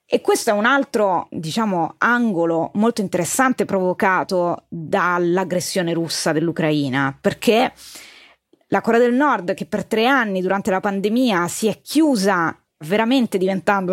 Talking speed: 130 wpm